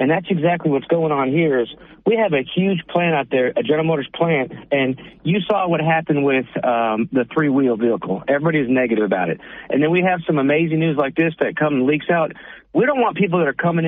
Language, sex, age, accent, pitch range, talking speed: English, male, 40-59, American, 135-165 Hz, 240 wpm